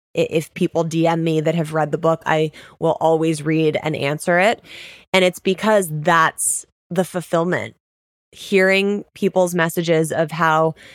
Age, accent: 20-39, American